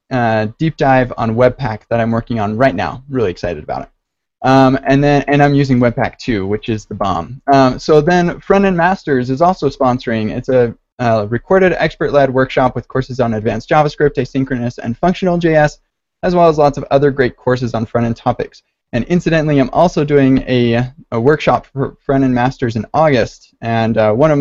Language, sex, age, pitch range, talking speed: English, male, 20-39, 125-155 Hz, 195 wpm